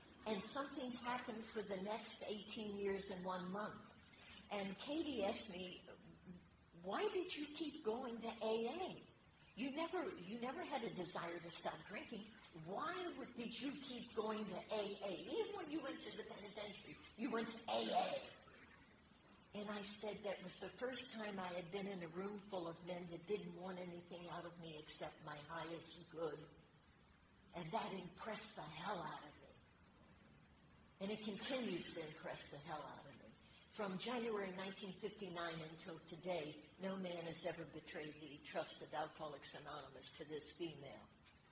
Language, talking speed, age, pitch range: English, 165 wpm, 50-69, 170-220 Hz